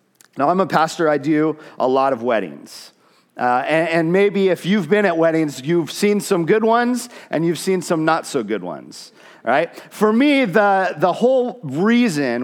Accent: American